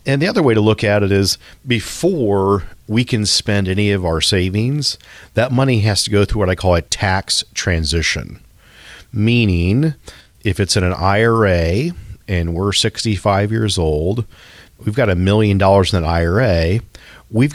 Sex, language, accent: male, English, American